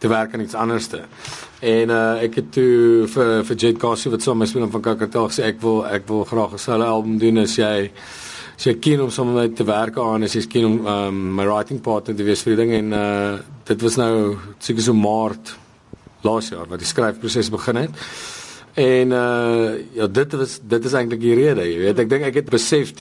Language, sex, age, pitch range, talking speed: Dutch, male, 40-59, 105-120 Hz, 210 wpm